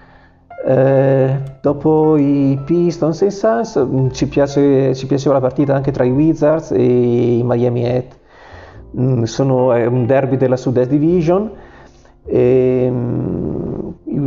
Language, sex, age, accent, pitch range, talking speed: Italian, male, 40-59, native, 120-140 Hz, 125 wpm